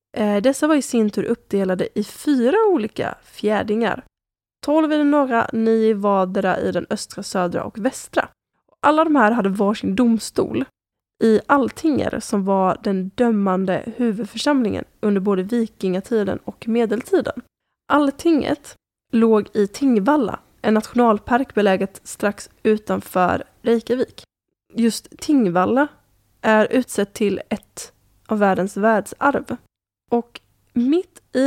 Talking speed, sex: 120 wpm, female